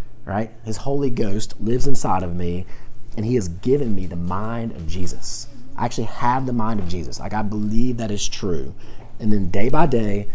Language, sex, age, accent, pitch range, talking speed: English, male, 30-49, American, 100-120 Hz, 205 wpm